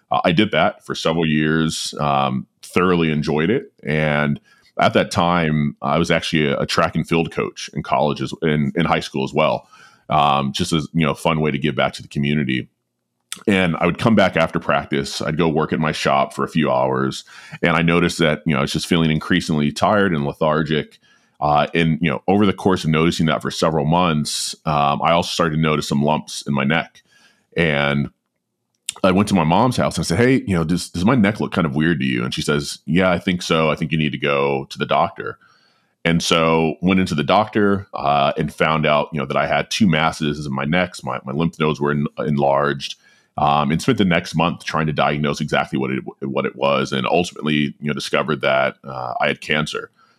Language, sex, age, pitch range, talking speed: English, male, 30-49, 70-85 Hz, 225 wpm